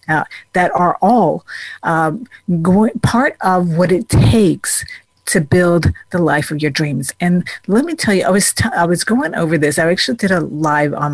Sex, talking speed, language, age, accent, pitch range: female, 195 wpm, English, 50-69, American, 155-195 Hz